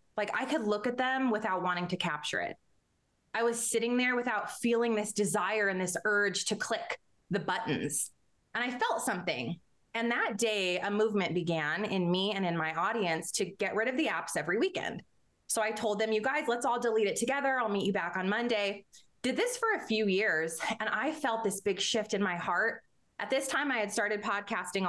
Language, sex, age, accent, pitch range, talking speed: English, female, 20-39, American, 185-235 Hz, 215 wpm